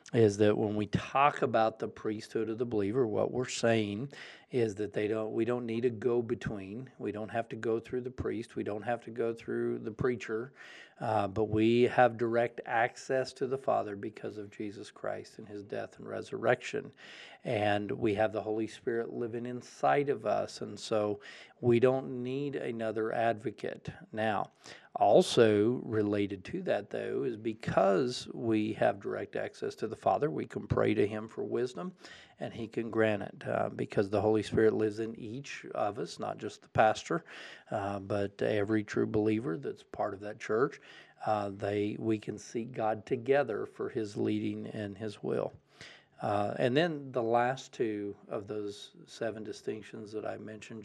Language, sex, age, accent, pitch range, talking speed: English, male, 50-69, American, 105-120 Hz, 180 wpm